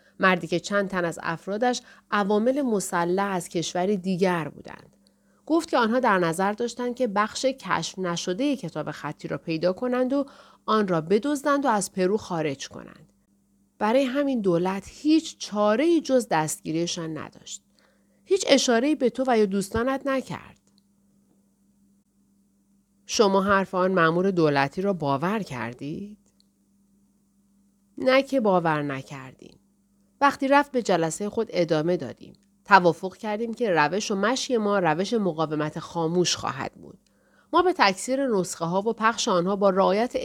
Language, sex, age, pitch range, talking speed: Persian, female, 40-59, 170-225 Hz, 140 wpm